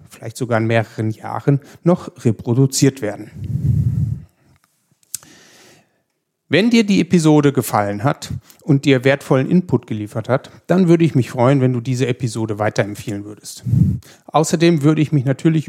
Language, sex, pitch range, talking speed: German, male, 120-150 Hz, 140 wpm